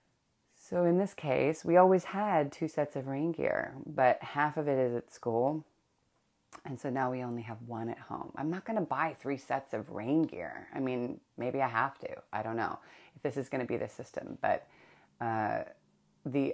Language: English